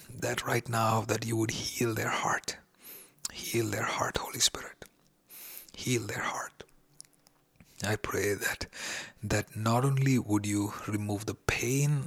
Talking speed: 140 wpm